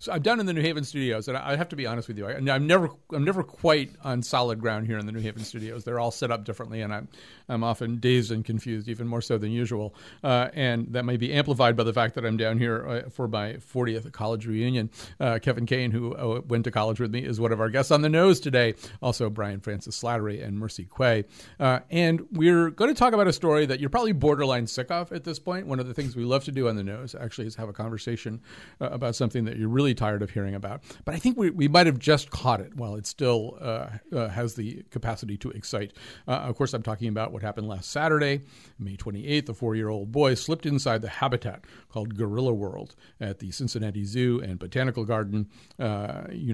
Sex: male